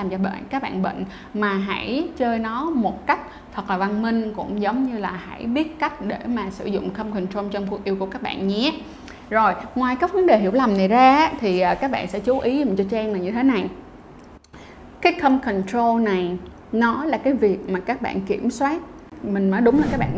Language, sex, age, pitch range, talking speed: Vietnamese, female, 20-39, 195-250 Hz, 230 wpm